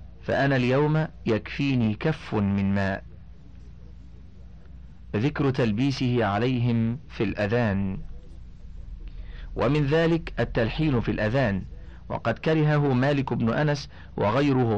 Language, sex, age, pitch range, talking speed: Arabic, male, 40-59, 100-140 Hz, 90 wpm